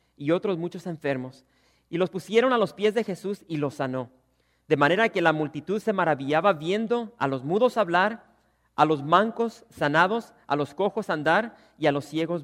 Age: 40-59